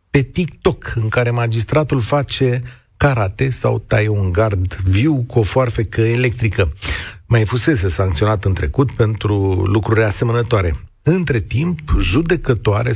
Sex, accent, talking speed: male, native, 125 wpm